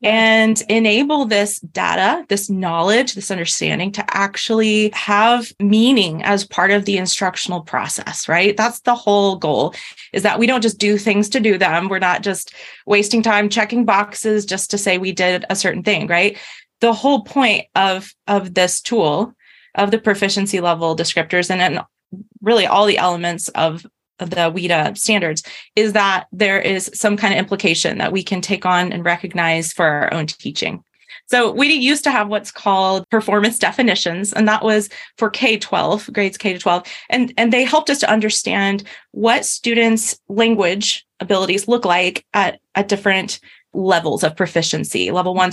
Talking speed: 165 wpm